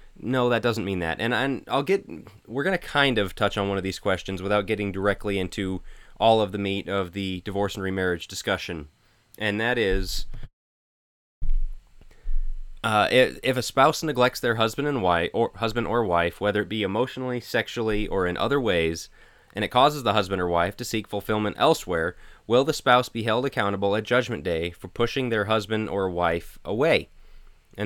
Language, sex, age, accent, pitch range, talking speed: English, male, 20-39, American, 100-125 Hz, 185 wpm